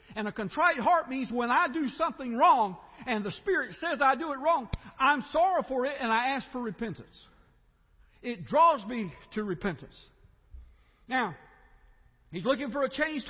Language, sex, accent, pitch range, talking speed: English, male, American, 215-280 Hz, 170 wpm